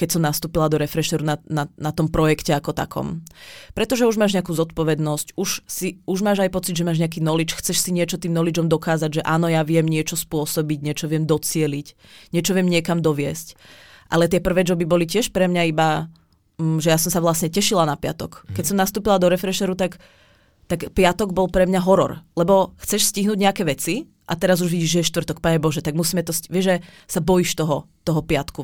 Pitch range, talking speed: 155-180 Hz, 210 wpm